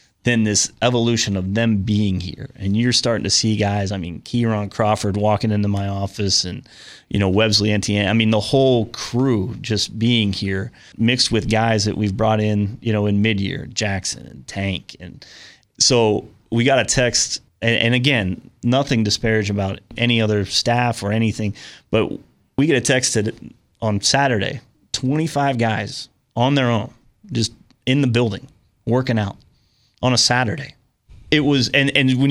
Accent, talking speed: American, 170 wpm